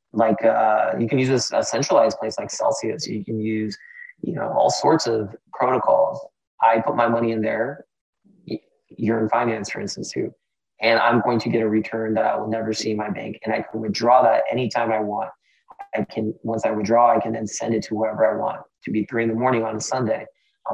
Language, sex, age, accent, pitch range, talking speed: English, male, 20-39, American, 110-115 Hz, 230 wpm